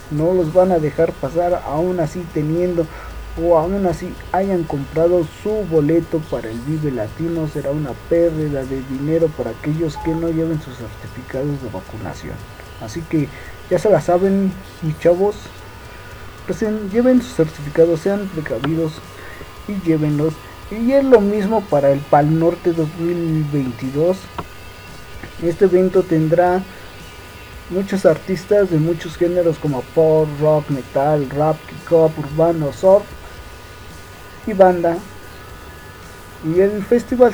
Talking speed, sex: 130 wpm, male